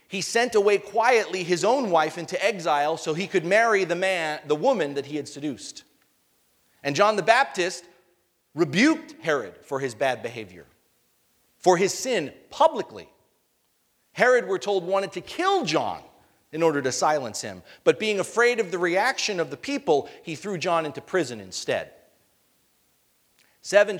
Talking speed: 155 wpm